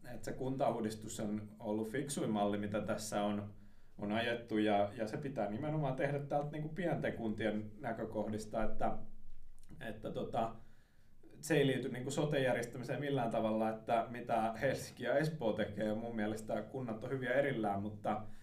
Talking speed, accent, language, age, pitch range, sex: 145 wpm, native, Finnish, 20-39, 105-125 Hz, male